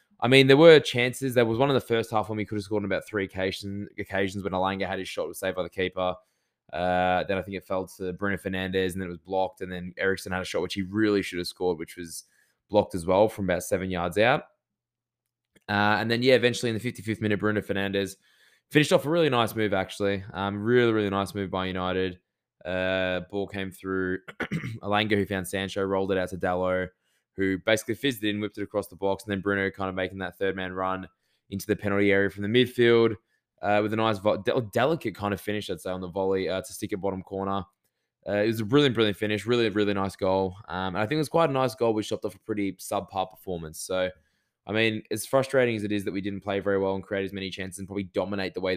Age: 20-39